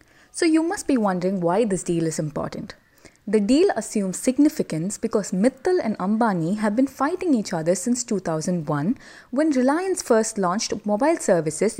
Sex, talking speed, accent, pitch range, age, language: female, 160 wpm, Indian, 180-260 Hz, 20-39, English